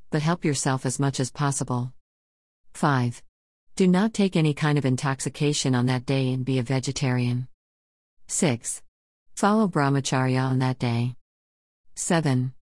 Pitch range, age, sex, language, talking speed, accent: 125-160 Hz, 50-69, female, English, 135 wpm, American